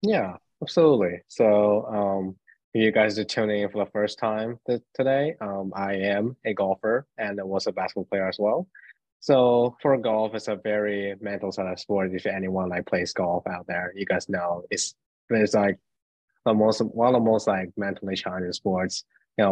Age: 20-39